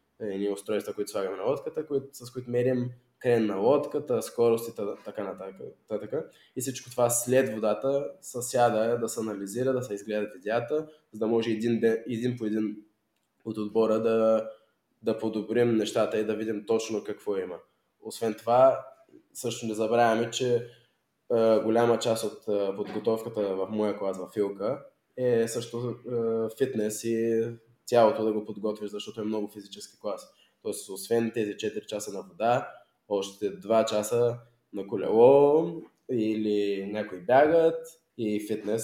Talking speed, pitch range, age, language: 150 wpm, 110-130 Hz, 20-39, Bulgarian